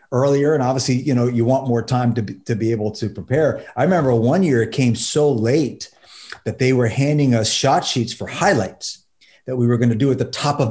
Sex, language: male, English